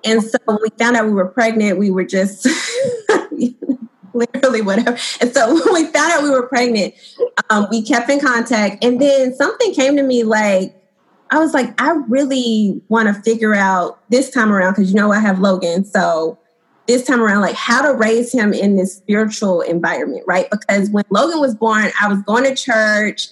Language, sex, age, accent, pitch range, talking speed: English, female, 20-39, American, 200-250 Hz, 200 wpm